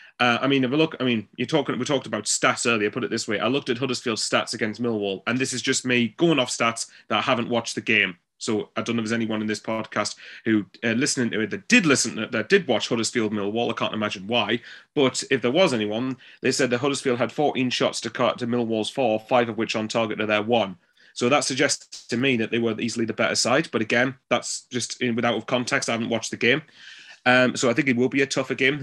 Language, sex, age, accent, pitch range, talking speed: English, male, 30-49, British, 115-130 Hz, 260 wpm